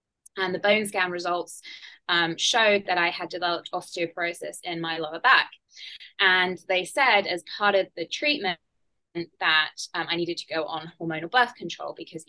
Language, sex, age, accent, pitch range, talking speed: English, female, 20-39, British, 165-200 Hz, 170 wpm